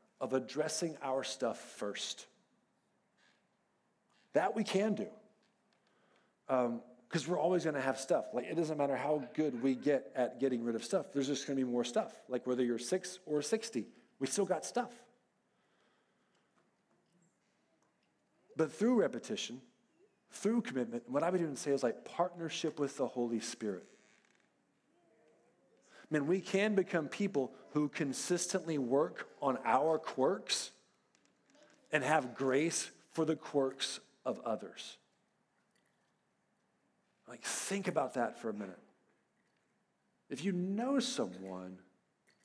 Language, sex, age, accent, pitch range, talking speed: English, male, 40-59, American, 130-185 Hz, 135 wpm